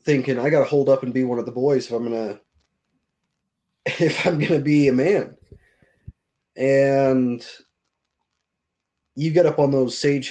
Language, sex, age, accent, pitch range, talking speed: English, male, 20-39, American, 120-140 Hz, 155 wpm